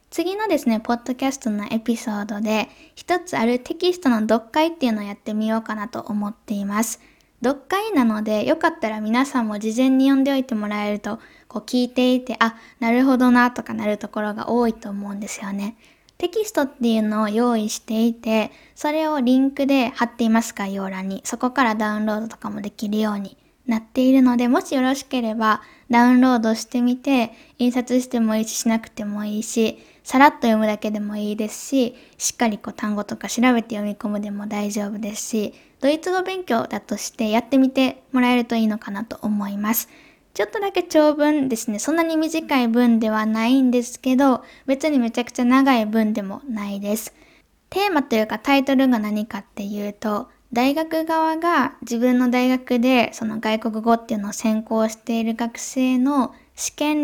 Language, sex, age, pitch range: Japanese, female, 10-29, 215-265 Hz